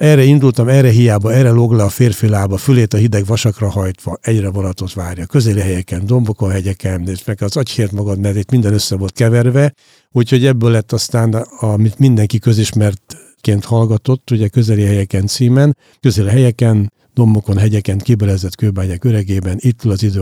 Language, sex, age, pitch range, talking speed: Hungarian, male, 60-79, 100-125 Hz, 160 wpm